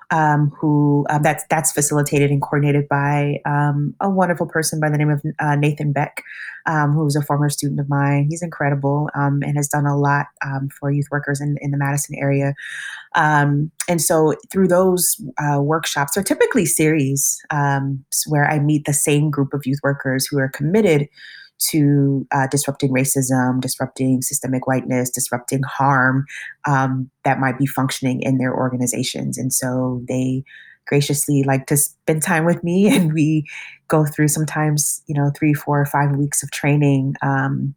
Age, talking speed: 30-49, 175 wpm